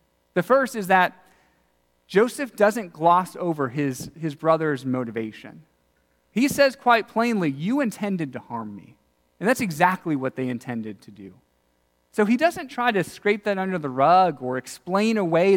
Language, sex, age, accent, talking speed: English, male, 40-59, American, 160 wpm